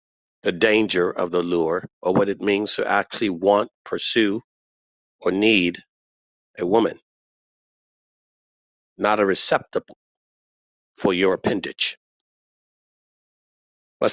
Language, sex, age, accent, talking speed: English, male, 50-69, American, 100 wpm